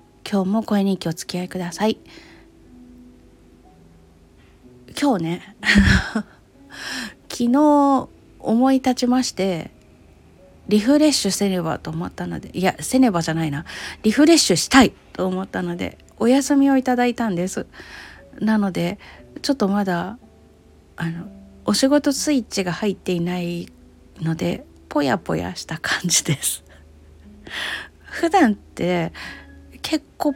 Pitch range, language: 155-240 Hz, Japanese